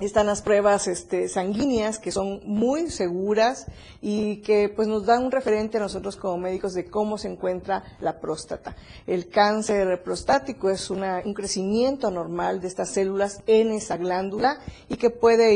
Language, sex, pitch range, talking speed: Spanish, female, 190-220 Hz, 165 wpm